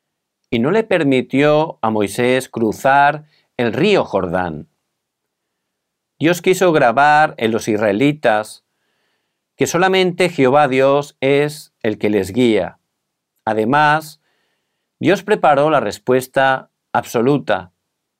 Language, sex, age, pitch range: Korean, male, 50-69, 110-160 Hz